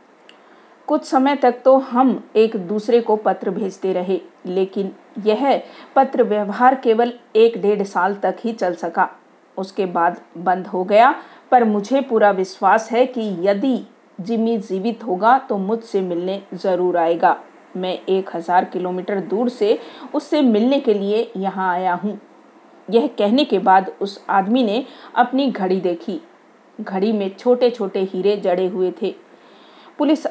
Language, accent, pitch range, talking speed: Hindi, native, 190-245 Hz, 150 wpm